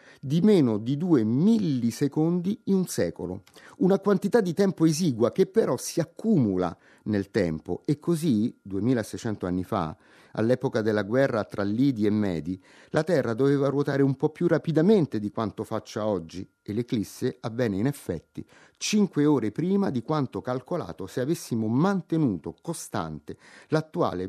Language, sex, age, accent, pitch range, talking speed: Italian, male, 30-49, native, 115-160 Hz, 145 wpm